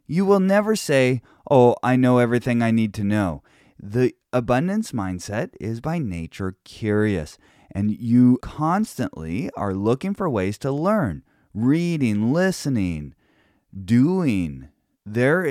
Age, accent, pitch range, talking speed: 30-49, American, 100-145 Hz, 125 wpm